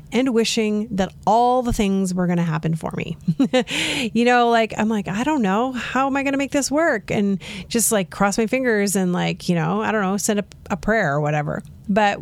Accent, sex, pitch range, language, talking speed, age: American, female, 170-210 Hz, English, 225 wpm, 30-49